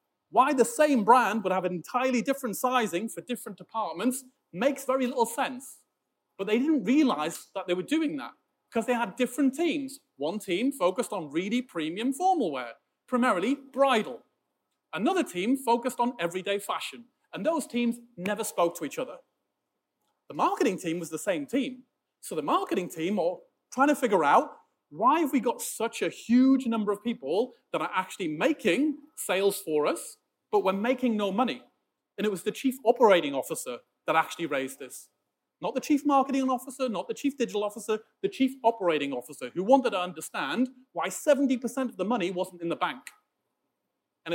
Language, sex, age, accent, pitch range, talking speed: English, male, 30-49, British, 185-270 Hz, 180 wpm